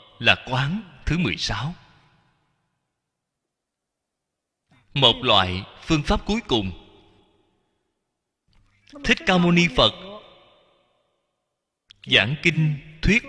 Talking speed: 80 wpm